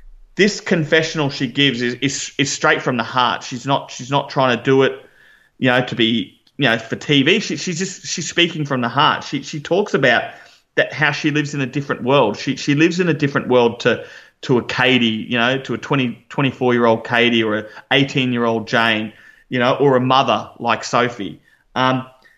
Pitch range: 125-165 Hz